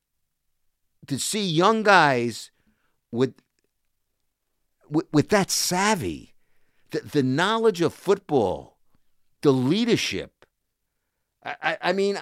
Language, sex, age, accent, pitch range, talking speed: English, male, 50-69, American, 130-190 Hz, 100 wpm